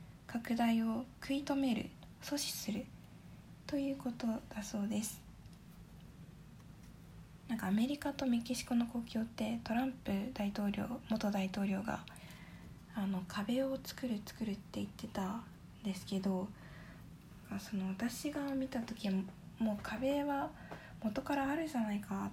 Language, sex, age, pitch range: Japanese, female, 20-39, 195-235 Hz